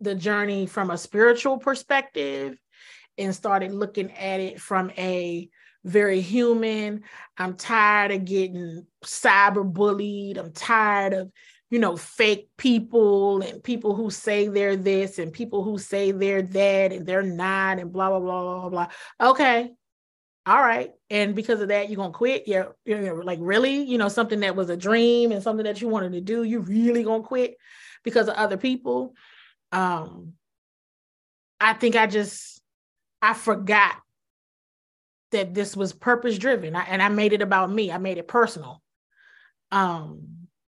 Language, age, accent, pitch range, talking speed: English, 30-49, American, 195-250 Hz, 165 wpm